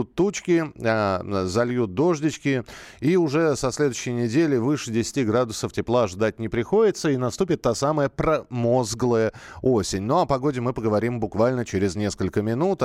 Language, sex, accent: Russian, male, native